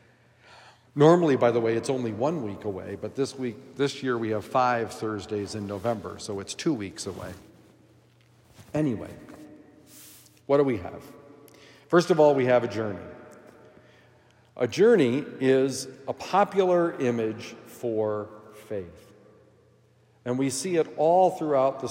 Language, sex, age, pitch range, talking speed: English, male, 50-69, 115-155 Hz, 140 wpm